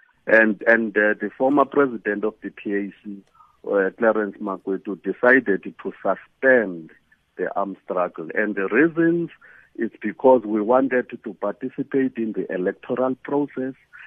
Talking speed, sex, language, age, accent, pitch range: 130 wpm, male, English, 50-69, South African, 105-145 Hz